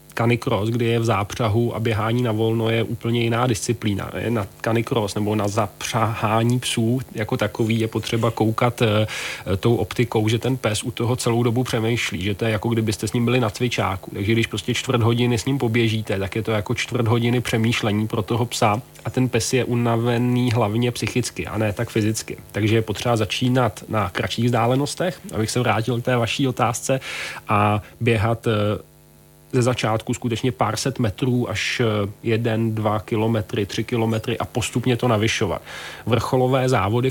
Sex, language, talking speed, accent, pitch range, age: male, Czech, 175 wpm, native, 110-125 Hz, 30-49